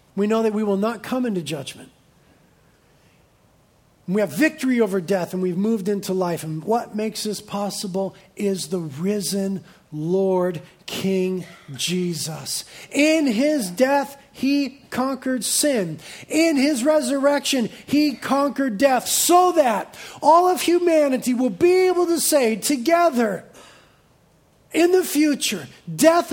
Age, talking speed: 40-59, 130 wpm